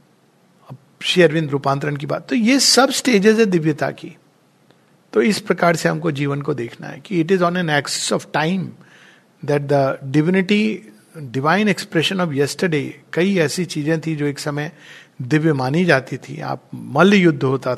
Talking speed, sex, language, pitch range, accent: 170 wpm, male, Hindi, 155-210 Hz, native